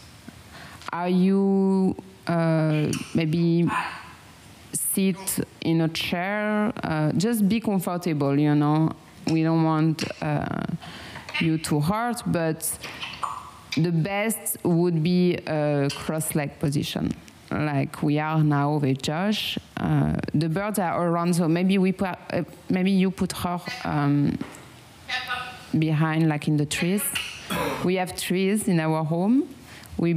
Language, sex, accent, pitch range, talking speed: English, female, French, 155-185 Hz, 125 wpm